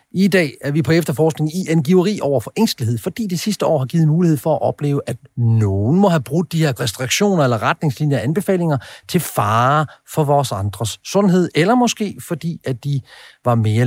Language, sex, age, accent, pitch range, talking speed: Danish, male, 40-59, native, 120-170 Hz, 200 wpm